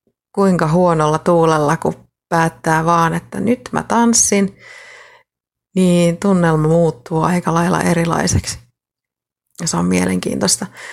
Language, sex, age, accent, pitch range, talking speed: Finnish, female, 30-49, native, 150-180 Hz, 105 wpm